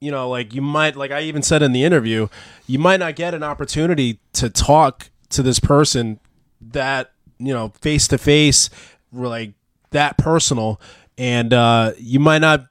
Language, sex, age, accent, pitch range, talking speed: English, male, 20-39, American, 120-145 Hz, 175 wpm